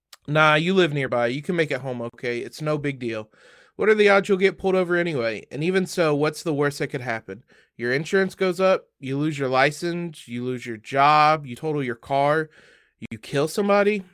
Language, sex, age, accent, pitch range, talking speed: English, male, 20-39, American, 130-160 Hz, 215 wpm